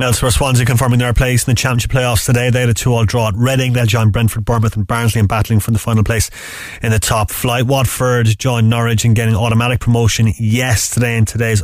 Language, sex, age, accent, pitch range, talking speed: English, male, 30-49, Irish, 110-125 Hz, 225 wpm